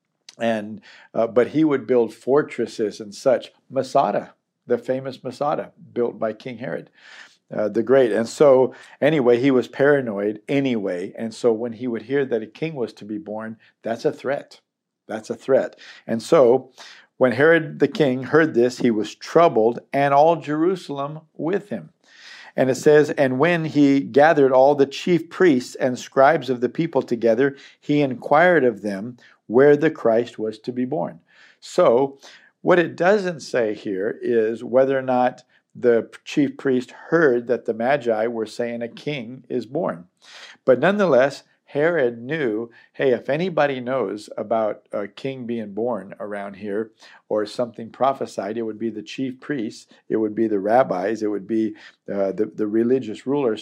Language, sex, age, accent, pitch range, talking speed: English, male, 50-69, American, 115-140 Hz, 170 wpm